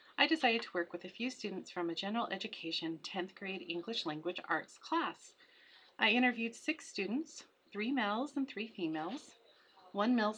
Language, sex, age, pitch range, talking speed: English, female, 30-49, 175-250 Hz, 170 wpm